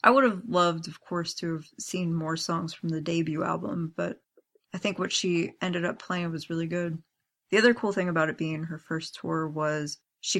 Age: 20-39